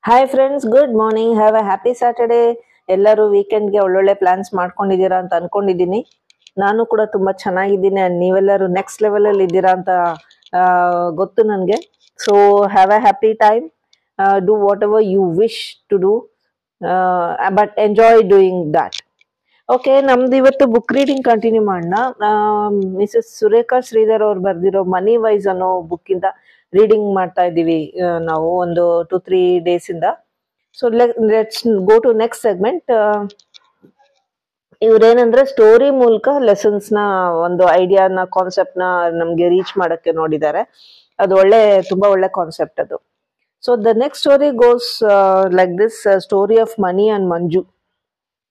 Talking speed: 140 wpm